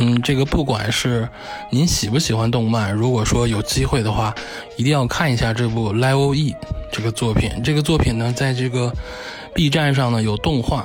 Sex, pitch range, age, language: male, 115-140 Hz, 20-39, Chinese